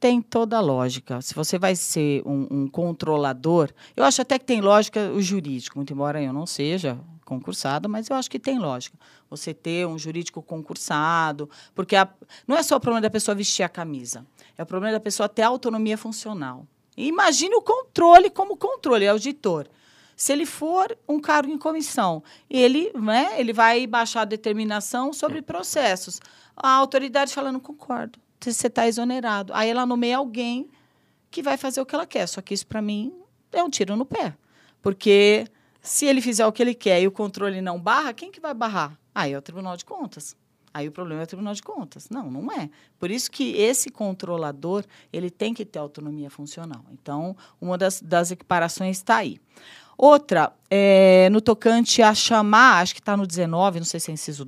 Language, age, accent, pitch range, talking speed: Portuguese, 40-59, Brazilian, 165-250 Hz, 190 wpm